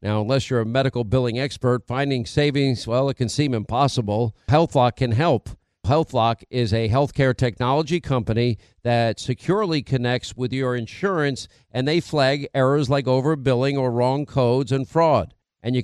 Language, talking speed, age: English, 160 wpm, 50-69